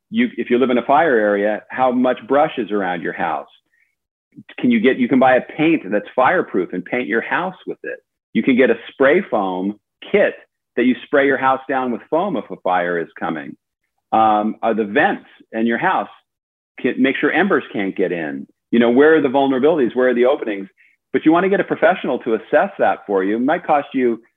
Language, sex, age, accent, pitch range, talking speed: English, male, 40-59, American, 105-130 Hz, 220 wpm